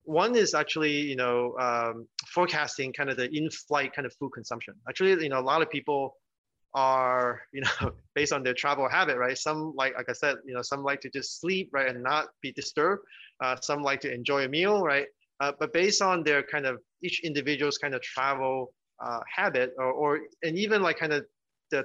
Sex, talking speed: male, 215 wpm